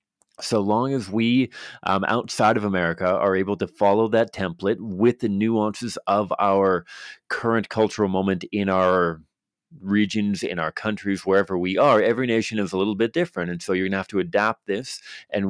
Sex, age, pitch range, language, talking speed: male, 30-49, 95-110 Hz, English, 185 wpm